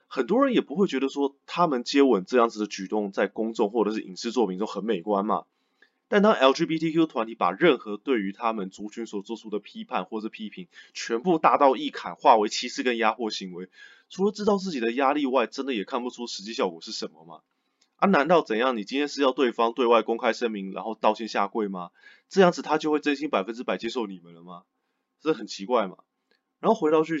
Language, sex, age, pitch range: Chinese, male, 20-39, 105-160 Hz